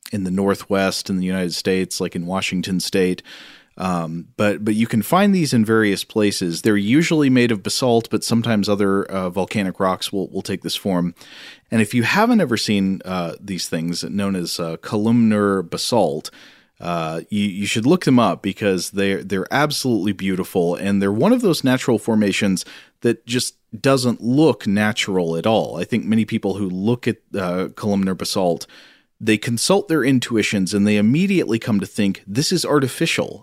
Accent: American